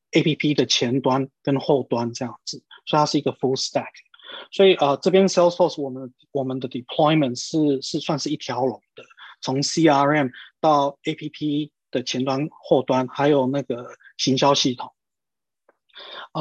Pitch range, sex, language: 130-160 Hz, male, Chinese